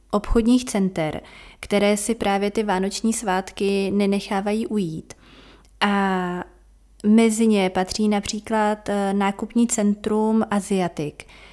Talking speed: 95 wpm